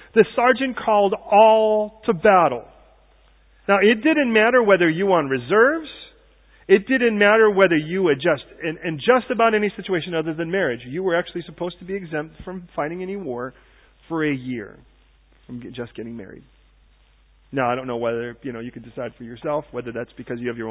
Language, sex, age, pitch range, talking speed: English, male, 40-59, 115-175 Hz, 190 wpm